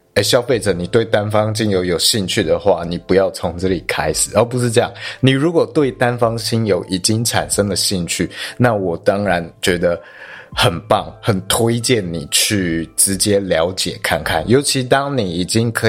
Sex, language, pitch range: male, Chinese, 95-125 Hz